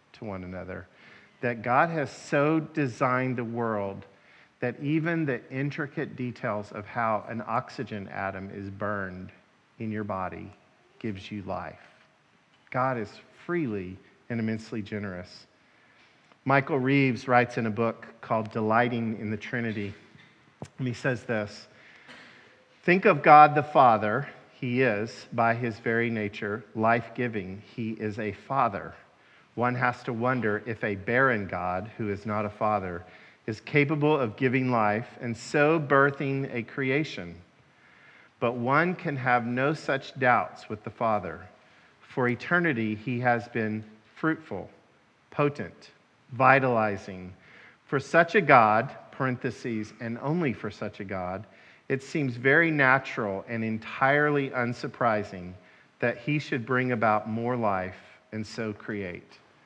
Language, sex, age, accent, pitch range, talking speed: English, male, 50-69, American, 105-135 Hz, 135 wpm